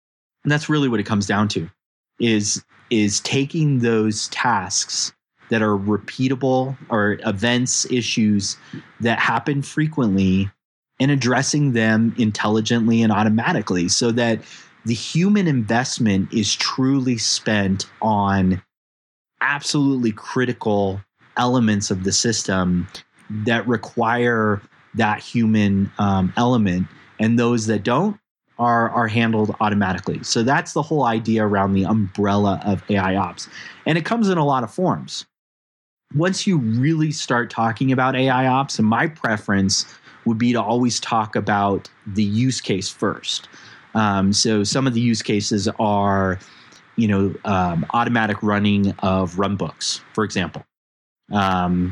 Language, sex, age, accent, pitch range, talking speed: English, male, 30-49, American, 100-125 Hz, 135 wpm